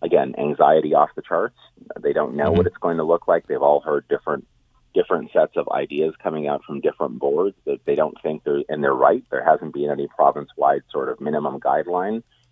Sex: male